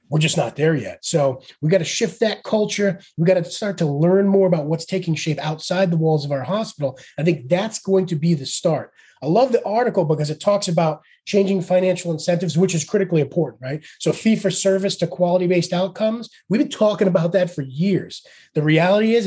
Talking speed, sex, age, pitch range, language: 220 wpm, male, 30-49, 155-195 Hz, English